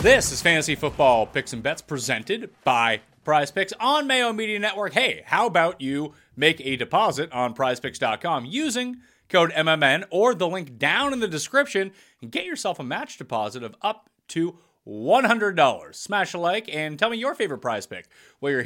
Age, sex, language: 30-49, male, English